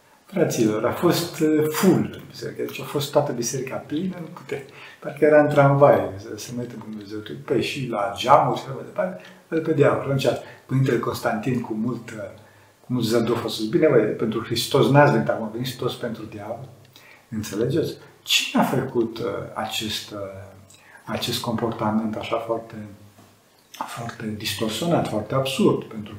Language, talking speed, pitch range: Romanian, 140 wpm, 110-145 Hz